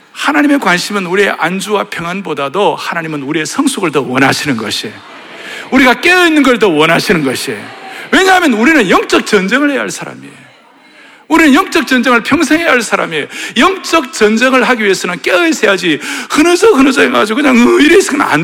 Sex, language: male, Korean